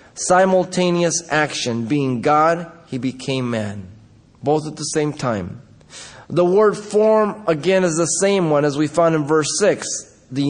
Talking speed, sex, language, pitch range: 155 wpm, male, English, 120-155 Hz